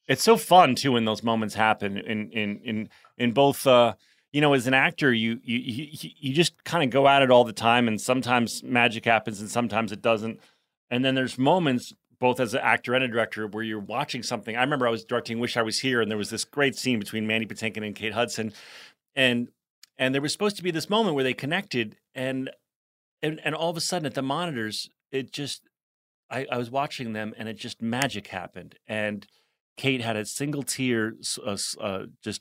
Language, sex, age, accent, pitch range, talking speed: English, male, 30-49, American, 110-140 Hz, 220 wpm